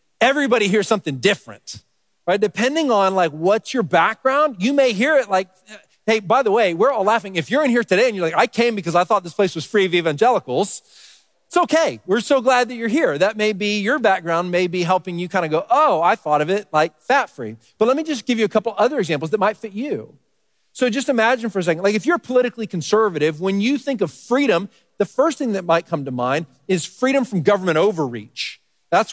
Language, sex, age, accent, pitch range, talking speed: English, male, 40-59, American, 170-235 Hz, 235 wpm